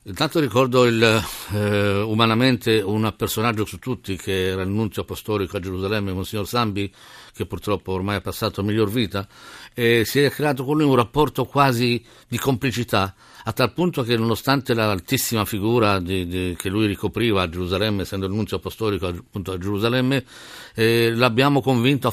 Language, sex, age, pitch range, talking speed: Italian, male, 50-69, 100-120 Hz, 170 wpm